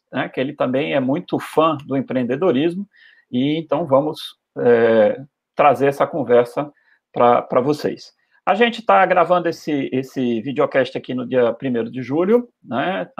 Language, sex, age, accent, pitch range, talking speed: Portuguese, male, 40-59, Brazilian, 125-180 Hz, 140 wpm